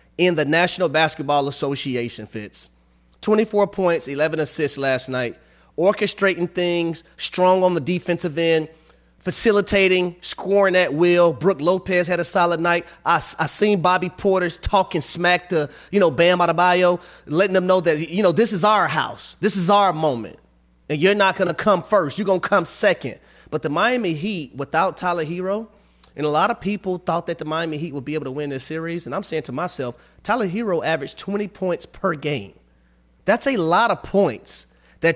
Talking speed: 185 wpm